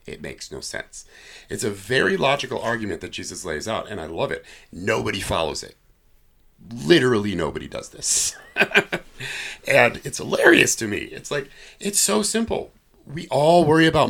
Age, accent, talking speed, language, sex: 50-69, American, 160 wpm, English, male